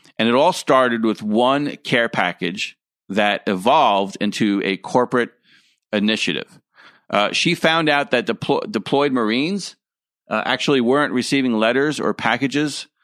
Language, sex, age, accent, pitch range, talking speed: English, male, 40-59, American, 110-135 Hz, 135 wpm